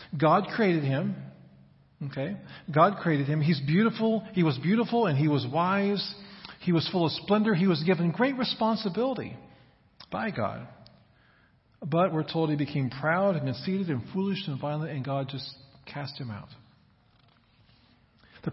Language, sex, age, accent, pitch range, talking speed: English, male, 40-59, American, 135-180 Hz, 150 wpm